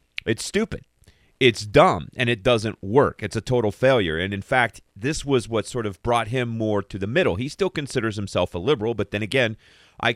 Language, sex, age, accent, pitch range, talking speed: English, male, 40-59, American, 90-115 Hz, 215 wpm